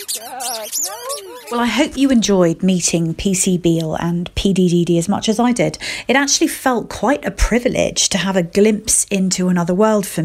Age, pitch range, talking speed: 40-59, 180-245 Hz, 170 wpm